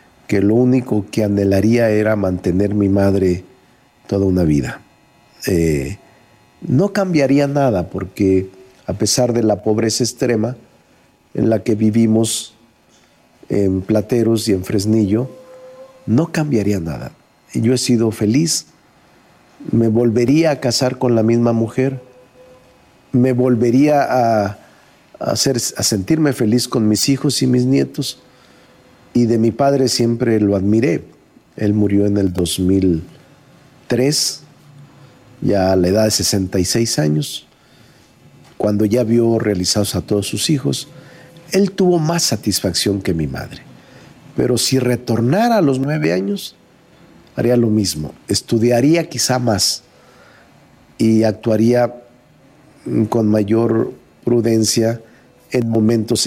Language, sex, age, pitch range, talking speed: Spanish, male, 50-69, 100-130 Hz, 120 wpm